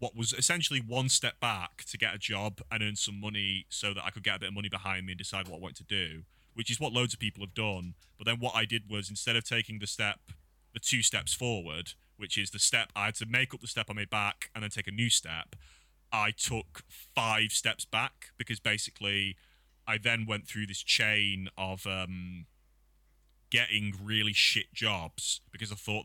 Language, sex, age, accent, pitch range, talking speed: English, male, 30-49, British, 95-110 Hz, 225 wpm